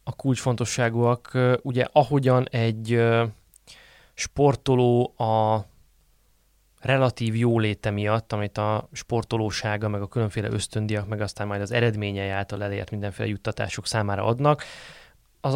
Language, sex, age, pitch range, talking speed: Hungarian, male, 20-39, 100-120 Hz, 110 wpm